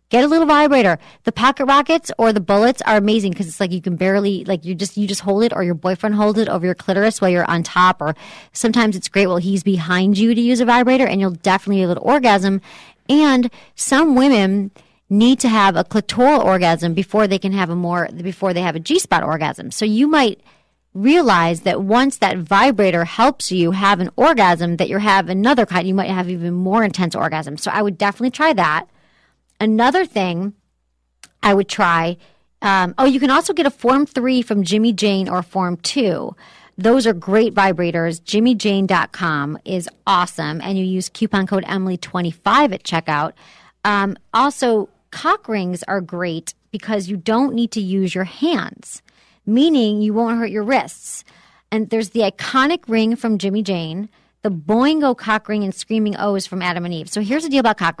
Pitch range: 185-230 Hz